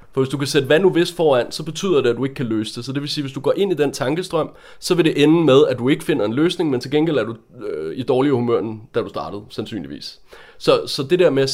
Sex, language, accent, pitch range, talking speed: male, Danish, native, 130-160 Hz, 310 wpm